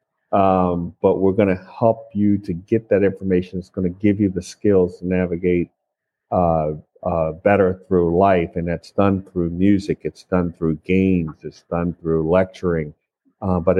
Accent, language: American, English